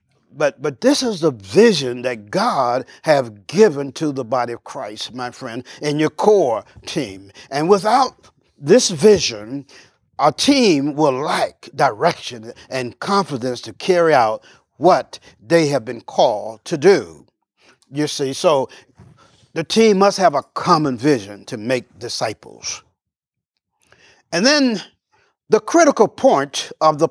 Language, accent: English, American